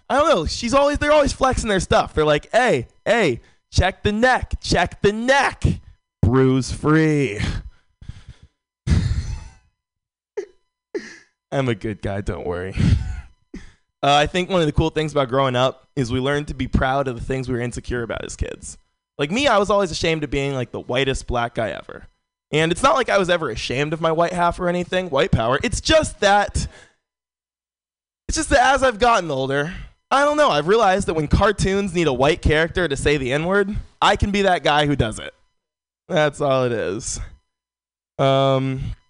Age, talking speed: 20-39, 185 wpm